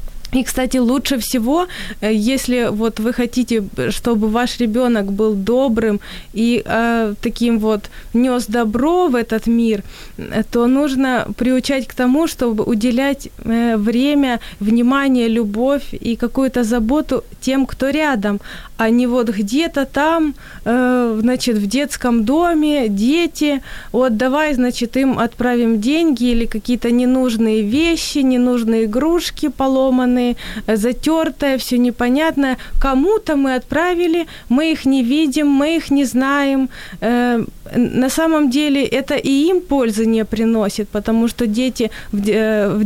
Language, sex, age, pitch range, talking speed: Ukrainian, female, 20-39, 225-275 Hz, 125 wpm